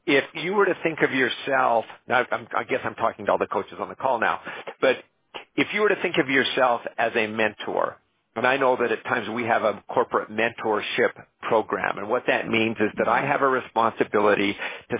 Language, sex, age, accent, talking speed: English, male, 50-69, American, 215 wpm